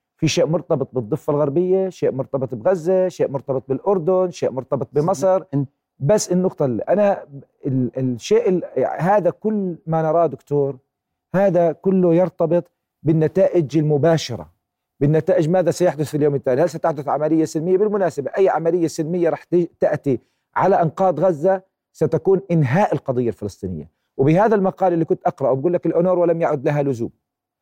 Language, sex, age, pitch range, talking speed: Arabic, male, 40-59, 140-175 Hz, 145 wpm